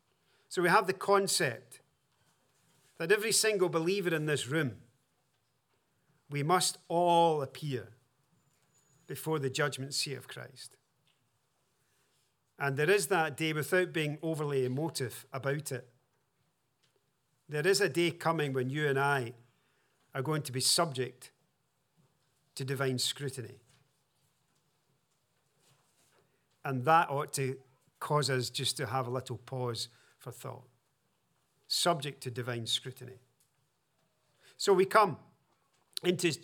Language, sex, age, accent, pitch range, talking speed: English, male, 50-69, British, 130-165 Hz, 115 wpm